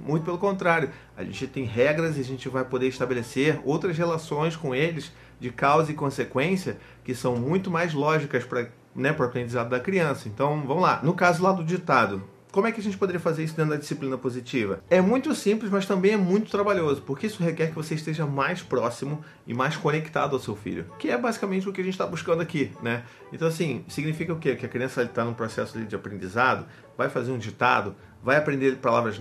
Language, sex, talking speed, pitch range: Portuguese, male, 215 wpm, 125-180 Hz